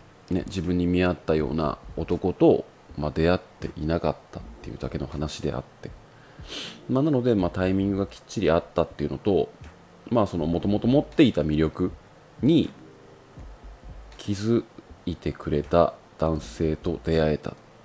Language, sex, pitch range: Japanese, male, 80-120 Hz